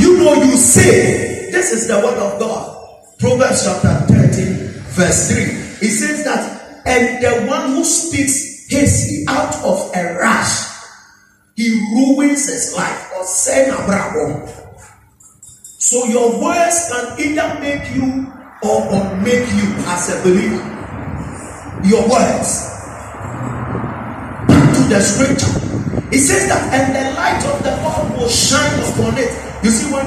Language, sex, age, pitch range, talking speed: English, male, 40-59, 225-285 Hz, 130 wpm